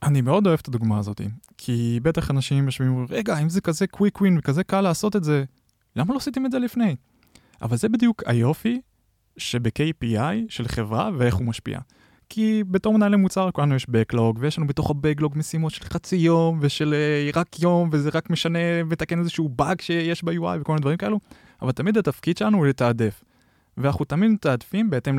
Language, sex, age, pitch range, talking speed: Hebrew, male, 20-39, 120-175 Hz, 185 wpm